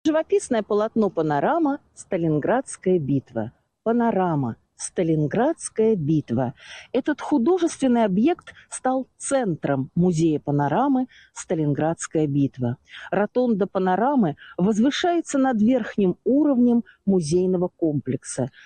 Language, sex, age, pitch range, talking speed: Russian, female, 50-69, 165-250 Hz, 80 wpm